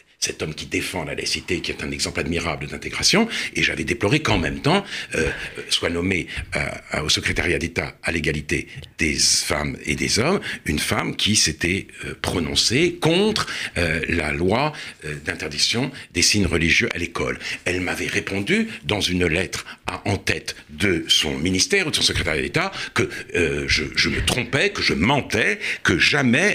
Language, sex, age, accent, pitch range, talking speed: French, male, 60-79, French, 85-125 Hz, 175 wpm